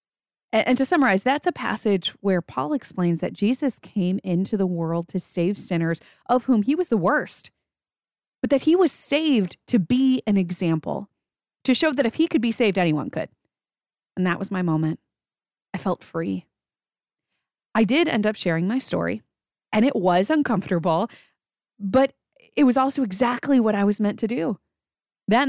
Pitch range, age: 175-245 Hz, 20-39